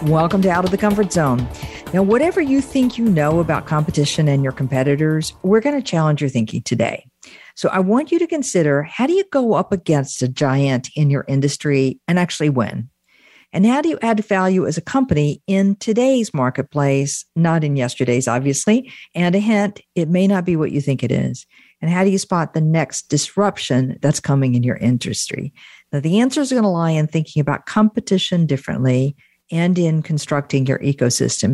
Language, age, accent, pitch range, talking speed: English, 50-69, American, 140-195 Hz, 195 wpm